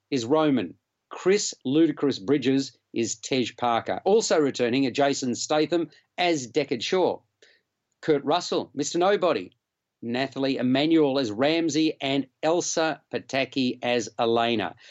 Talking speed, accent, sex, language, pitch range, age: 115 wpm, Australian, male, English, 135-175 Hz, 50-69